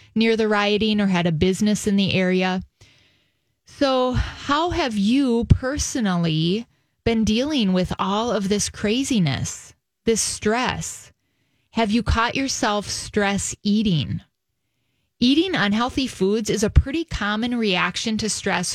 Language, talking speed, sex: English, 130 wpm, female